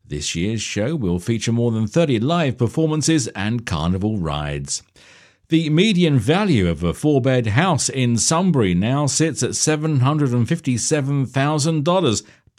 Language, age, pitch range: English, 50-69, 105-150 Hz